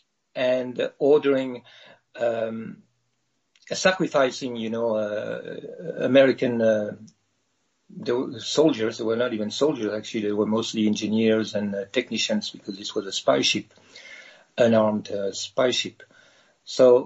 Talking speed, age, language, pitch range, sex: 120 wpm, 50-69, English, 110-135 Hz, male